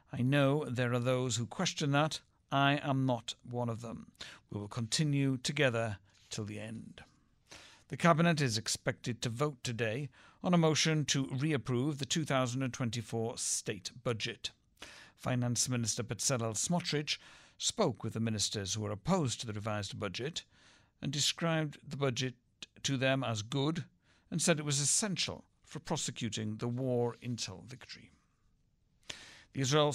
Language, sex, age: English, male, 60-79